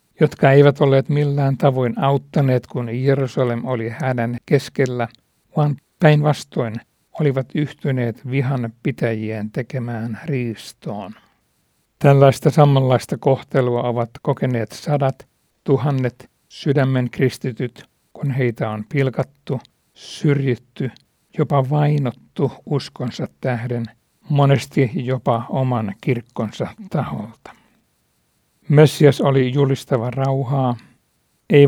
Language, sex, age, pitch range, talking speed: Finnish, male, 60-79, 120-145 Hz, 90 wpm